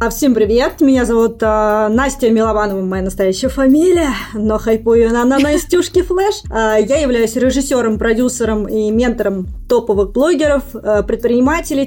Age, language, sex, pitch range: 20-39, Russian, female, 215-260 Hz